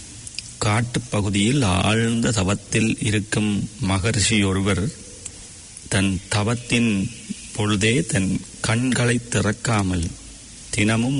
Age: 40-59